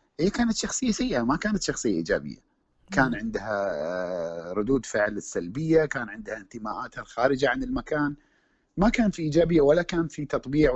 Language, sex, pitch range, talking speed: Arabic, male, 105-140 Hz, 150 wpm